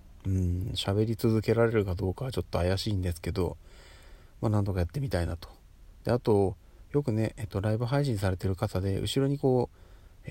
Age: 40-59